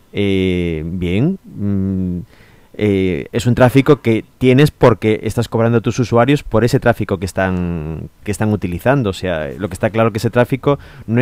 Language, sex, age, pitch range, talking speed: English, male, 30-49, 100-120 Hz, 175 wpm